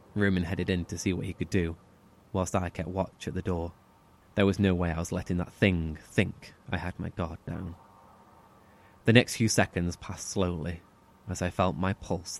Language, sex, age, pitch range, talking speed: English, male, 20-39, 90-110 Hz, 205 wpm